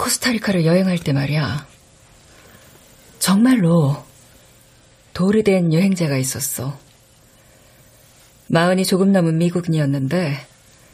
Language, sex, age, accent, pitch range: Korean, female, 40-59, native, 135-180 Hz